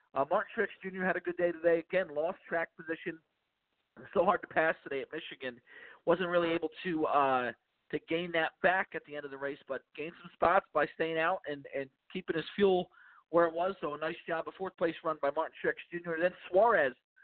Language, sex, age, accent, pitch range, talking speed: English, male, 40-59, American, 155-195 Hz, 225 wpm